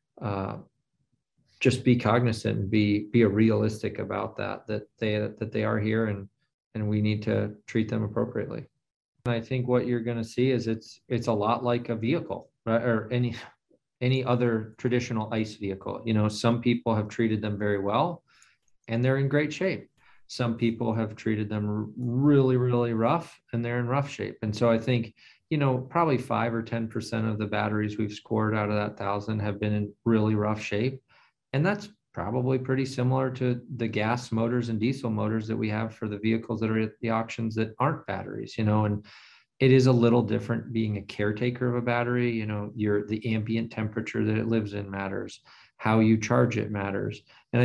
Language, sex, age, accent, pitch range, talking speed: English, male, 40-59, American, 110-120 Hz, 200 wpm